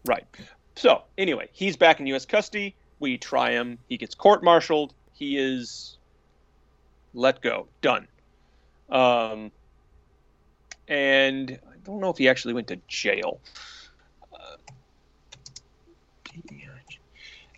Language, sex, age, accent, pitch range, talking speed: English, male, 30-49, American, 125-205 Hz, 105 wpm